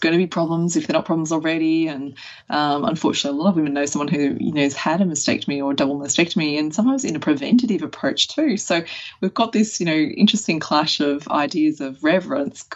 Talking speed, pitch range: 220 wpm, 150-235 Hz